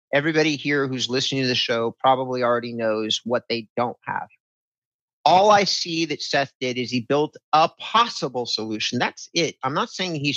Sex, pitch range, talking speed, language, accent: male, 125-155 Hz, 185 wpm, English, American